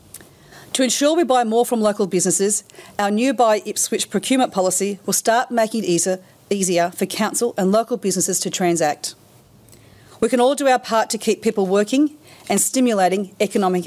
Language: English